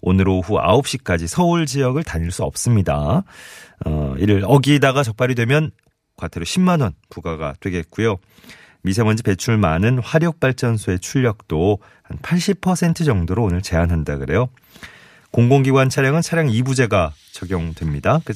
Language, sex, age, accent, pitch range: Korean, male, 30-49, native, 85-125 Hz